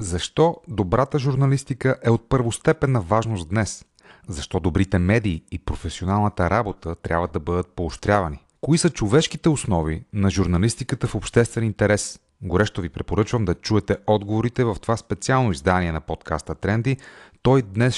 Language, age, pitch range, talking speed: Bulgarian, 30-49, 85-115 Hz, 140 wpm